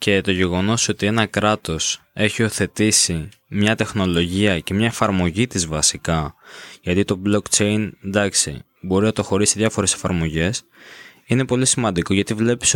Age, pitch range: 20-39, 95-115 Hz